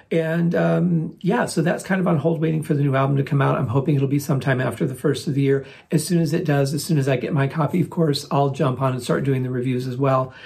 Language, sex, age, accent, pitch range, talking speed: English, male, 40-59, American, 140-165 Hz, 300 wpm